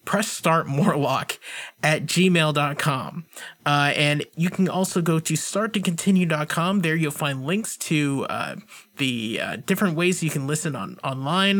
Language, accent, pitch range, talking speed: English, American, 145-190 Hz, 150 wpm